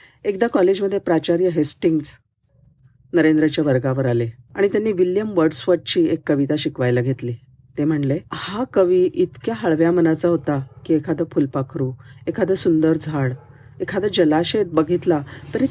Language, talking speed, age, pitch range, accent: Marathi, 125 wpm, 40-59, 135-175 Hz, native